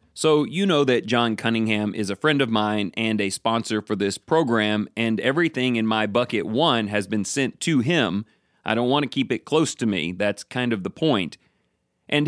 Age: 30-49